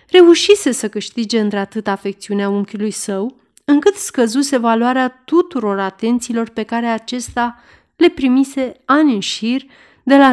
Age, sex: 30-49, female